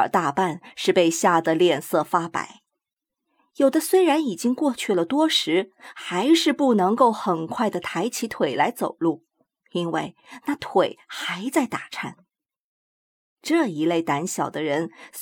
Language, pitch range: Chinese, 180-300 Hz